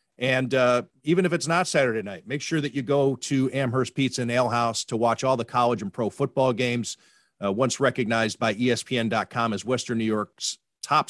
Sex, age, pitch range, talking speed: male, 40-59, 110-140 Hz, 200 wpm